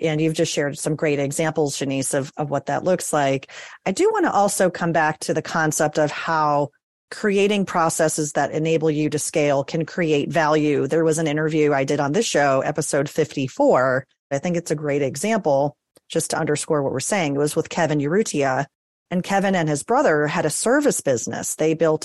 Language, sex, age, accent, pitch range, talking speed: English, female, 40-59, American, 150-185 Hz, 205 wpm